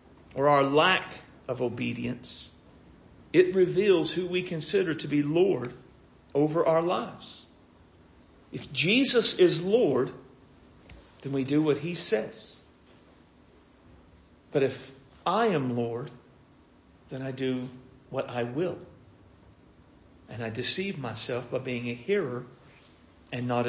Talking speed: 120 wpm